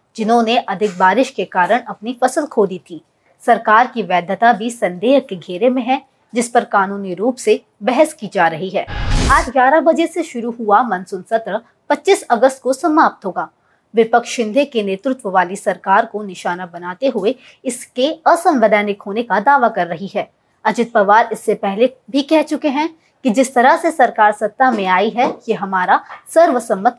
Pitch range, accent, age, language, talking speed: 200-265 Hz, native, 20-39, Hindi, 175 wpm